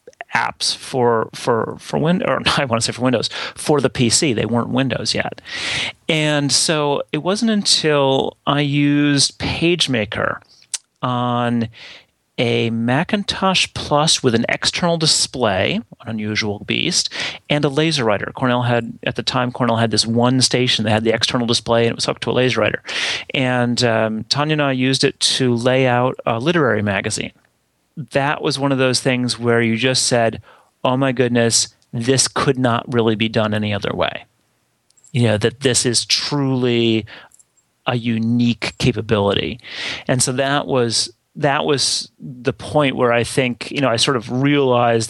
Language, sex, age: English, male, 30-49